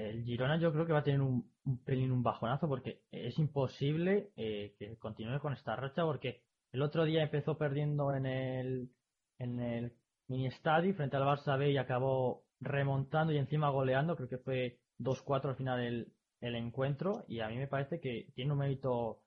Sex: male